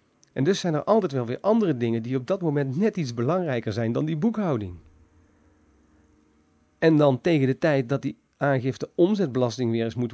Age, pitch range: 40-59, 120-165 Hz